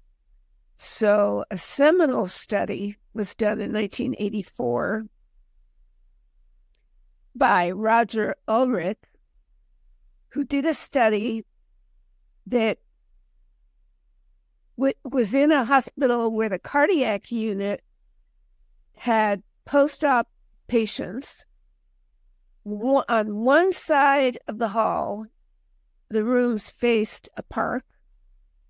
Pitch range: 205-260 Hz